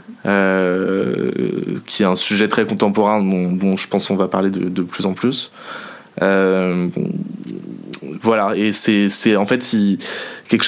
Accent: French